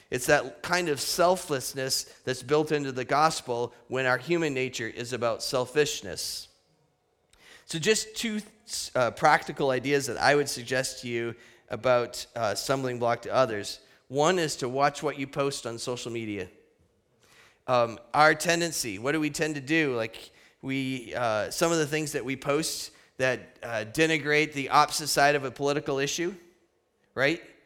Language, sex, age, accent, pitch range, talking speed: English, male, 30-49, American, 130-155 Hz, 160 wpm